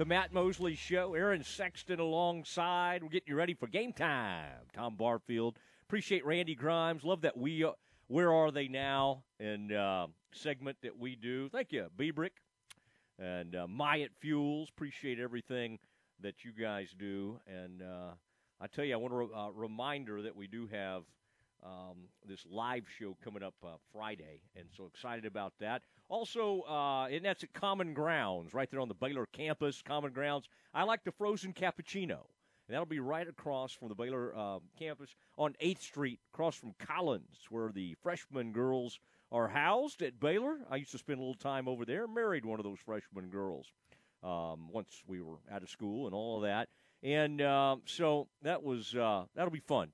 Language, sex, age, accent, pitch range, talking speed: English, male, 40-59, American, 105-160 Hz, 185 wpm